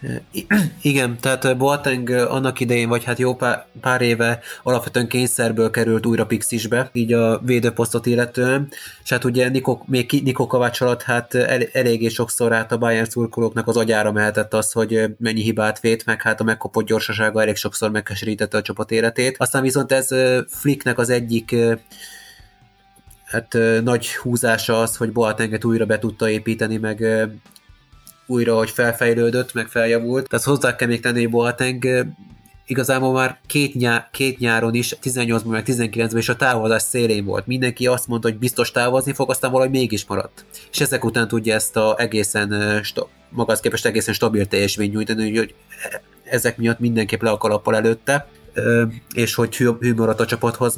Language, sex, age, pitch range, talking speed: Hungarian, male, 30-49, 110-125 Hz, 165 wpm